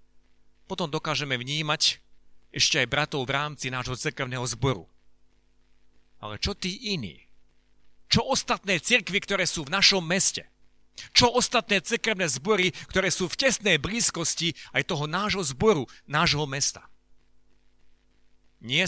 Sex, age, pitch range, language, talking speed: male, 40-59, 120-185 Hz, Slovak, 125 wpm